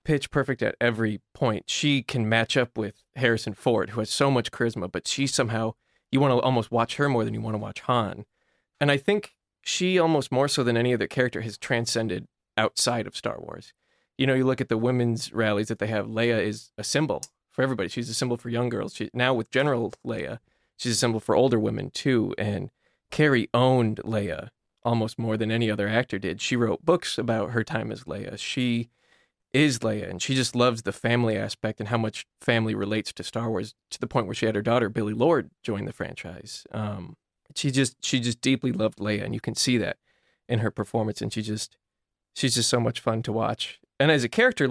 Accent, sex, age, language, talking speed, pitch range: American, male, 20-39, English, 220 wpm, 110-130 Hz